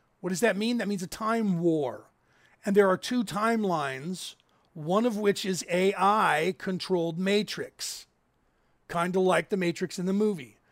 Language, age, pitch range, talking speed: English, 40-59, 175-215 Hz, 155 wpm